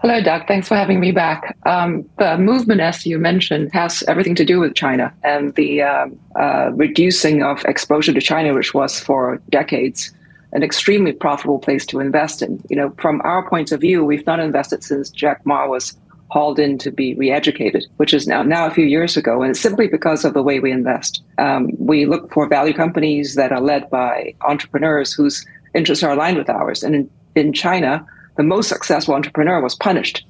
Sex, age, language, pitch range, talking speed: female, 40-59, English, 140-170 Hz, 200 wpm